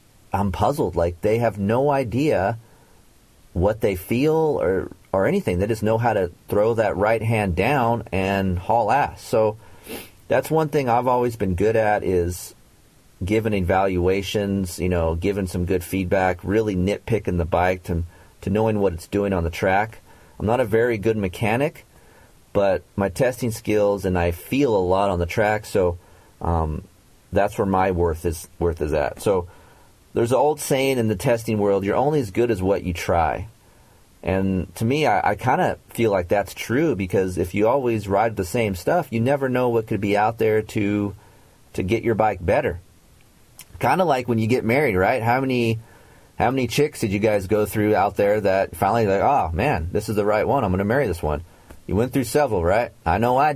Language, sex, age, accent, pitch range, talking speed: English, male, 40-59, American, 95-115 Hz, 200 wpm